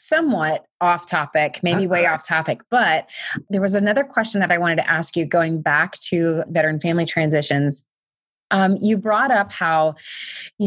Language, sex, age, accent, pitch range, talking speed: English, female, 20-39, American, 160-190 Hz, 170 wpm